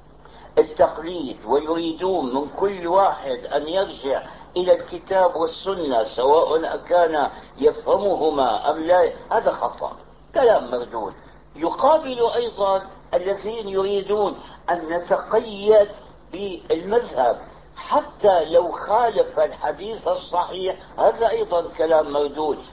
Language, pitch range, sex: Arabic, 170-225 Hz, male